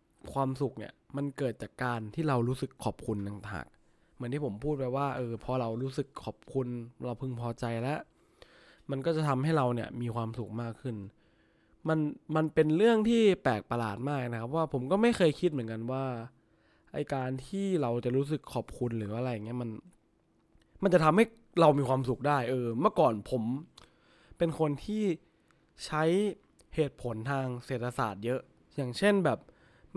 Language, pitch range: English, 120-155 Hz